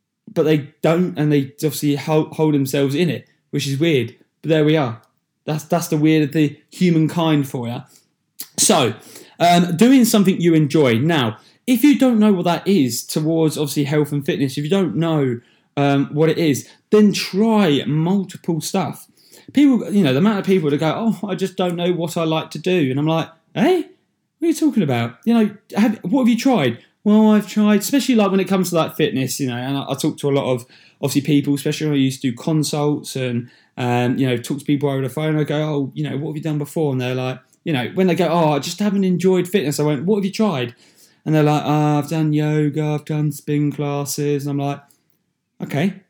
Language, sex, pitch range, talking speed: English, male, 145-180 Hz, 230 wpm